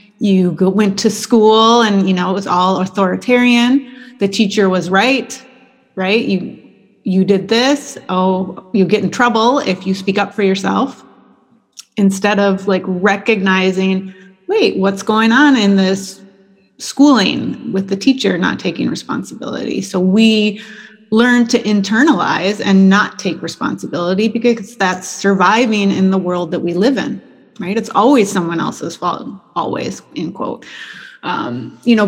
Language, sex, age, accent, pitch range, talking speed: English, female, 30-49, American, 190-225 Hz, 150 wpm